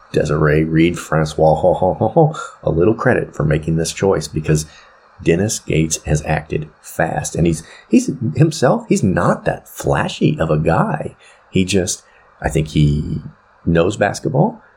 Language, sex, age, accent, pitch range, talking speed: English, male, 30-49, American, 80-110 Hz, 140 wpm